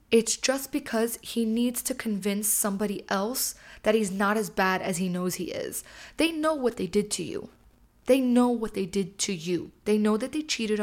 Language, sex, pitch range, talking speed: English, female, 200-245 Hz, 210 wpm